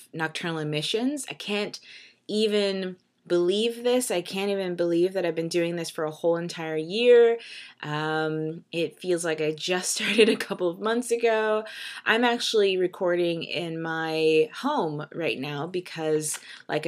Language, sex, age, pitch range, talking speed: English, female, 20-39, 155-210 Hz, 155 wpm